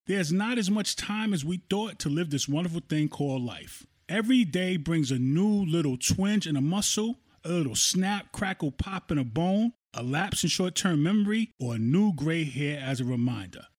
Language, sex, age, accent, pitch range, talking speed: English, male, 30-49, American, 135-195 Hz, 200 wpm